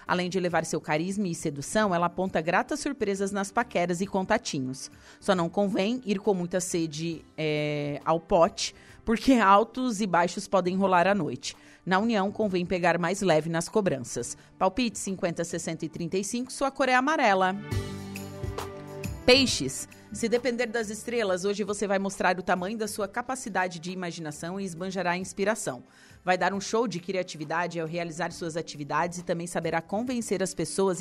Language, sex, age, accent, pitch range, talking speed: Portuguese, female, 30-49, Brazilian, 165-210 Hz, 165 wpm